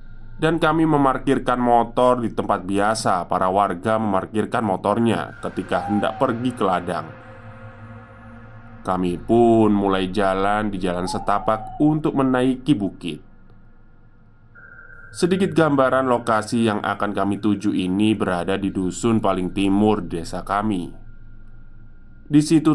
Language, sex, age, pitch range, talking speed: Indonesian, male, 20-39, 100-120 Hz, 110 wpm